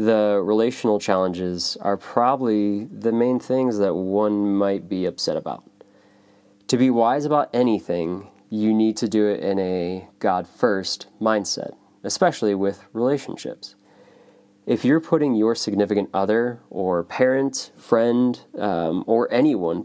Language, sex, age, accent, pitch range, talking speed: English, male, 20-39, American, 95-110 Hz, 130 wpm